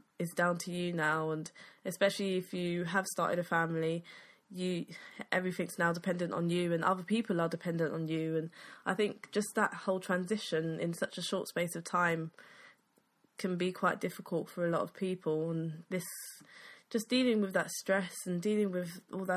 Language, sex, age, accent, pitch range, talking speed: English, female, 10-29, British, 175-200 Hz, 190 wpm